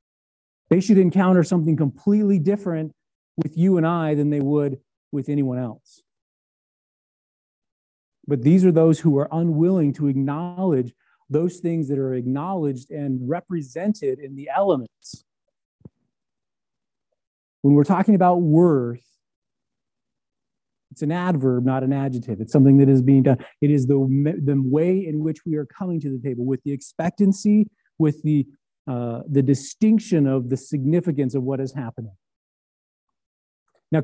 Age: 30-49